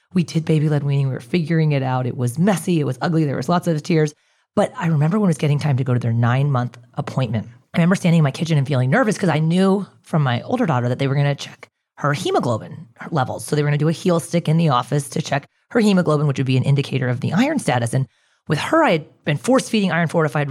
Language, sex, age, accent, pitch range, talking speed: English, female, 30-49, American, 145-190 Hz, 275 wpm